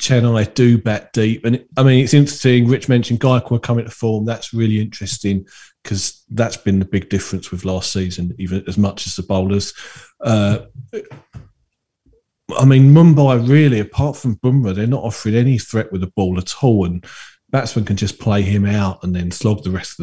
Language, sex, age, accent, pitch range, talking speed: English, male, 40-59, British, 100-125 Hz, 190 wpm